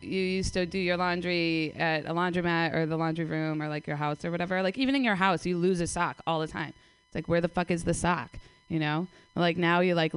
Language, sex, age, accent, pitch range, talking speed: English, female, 20-39, American, 155-185 Hz, 270 wpm